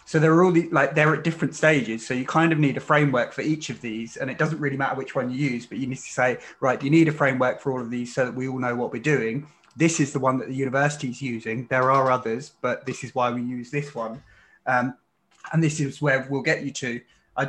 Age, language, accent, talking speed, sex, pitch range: 20-39, English, British, 280 wpm, male, 125-145 Hz